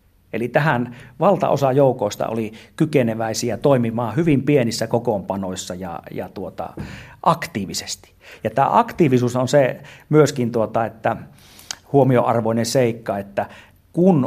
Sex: male